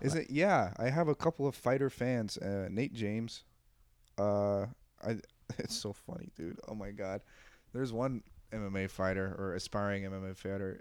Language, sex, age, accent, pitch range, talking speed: English, male, 20-39, American, 95-115 Hz, 165 wpm